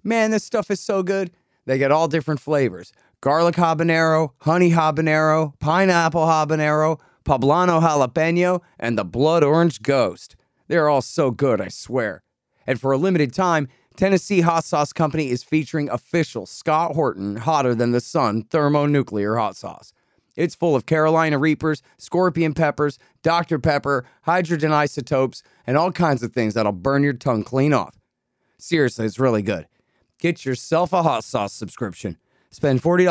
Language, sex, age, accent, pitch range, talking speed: English, male, 40-59, American, 125-165 Hz, 155 wpm